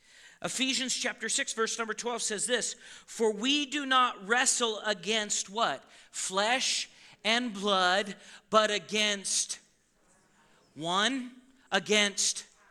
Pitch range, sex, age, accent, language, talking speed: 195-245 Hz, male, 40-59, American, English, 105 wpm